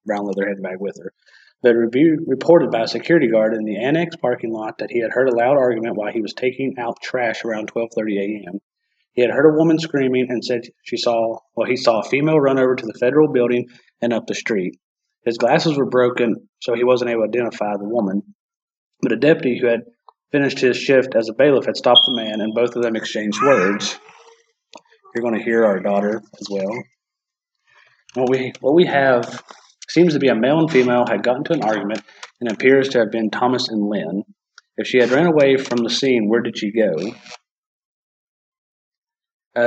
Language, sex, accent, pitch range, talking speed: English, male, American, 110-135 Hz, 210 wpm